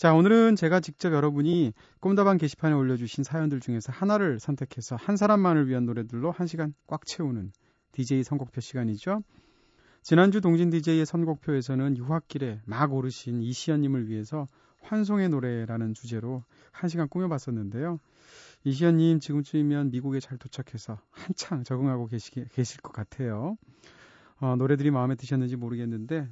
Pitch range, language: 120-165 Hz, Korean